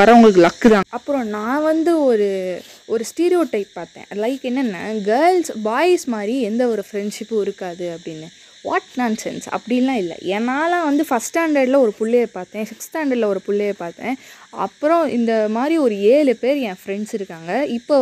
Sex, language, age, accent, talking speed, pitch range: female, Tamil, 20-39, native, 145 wpm, 195-250 Hz